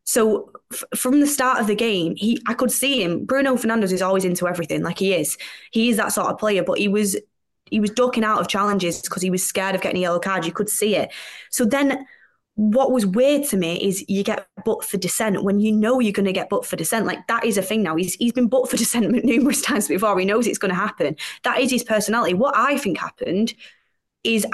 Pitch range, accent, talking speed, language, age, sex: 185-230 Hz, British, 250 wpm, English, 20-39, female